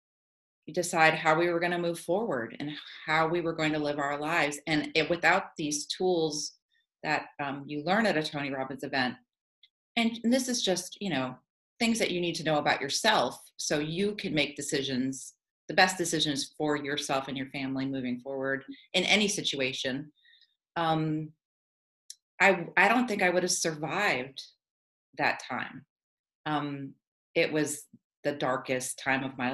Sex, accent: female, American